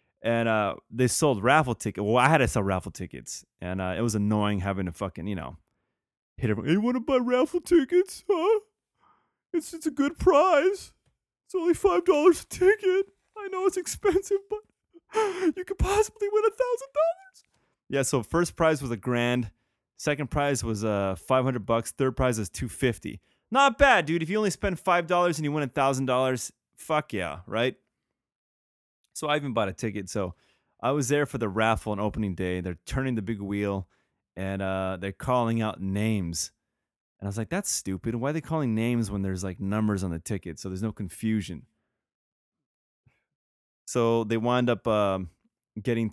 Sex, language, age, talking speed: male, English, 20-39, 190 wpm